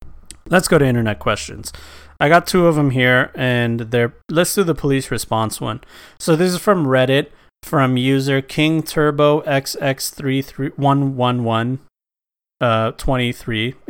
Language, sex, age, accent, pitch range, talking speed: English, male, 30-49, American, 120-145 Hz, 135 wpm